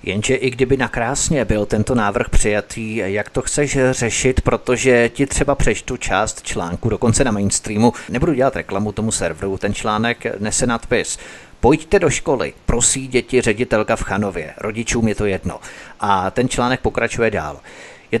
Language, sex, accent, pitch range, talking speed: Czech, male, native, 105-125 Hz, 160 wpm